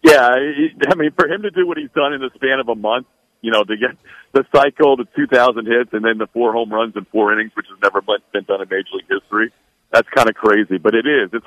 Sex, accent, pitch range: male, American, 100-125 Hz